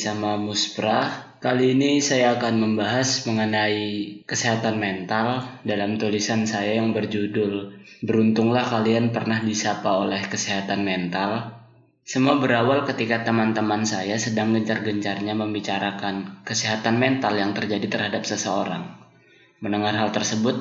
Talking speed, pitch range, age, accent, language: 115 wpm, 105-120 Hz, 20-39, native, Indonesian